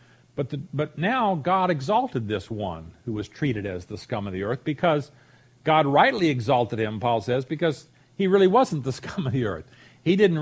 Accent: American